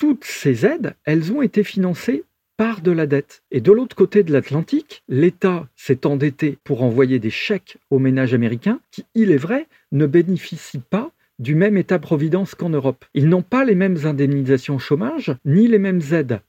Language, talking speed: French, 185 wpm